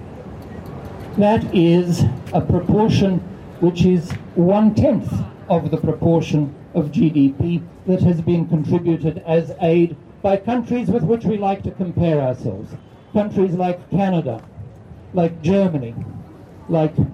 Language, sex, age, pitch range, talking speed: Ukrainian, male, 60-79, 140-195 Hz, 115 wpm